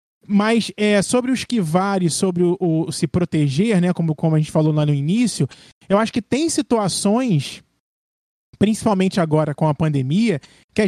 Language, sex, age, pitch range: Portuguese, male, 20-39, 160-220 Hz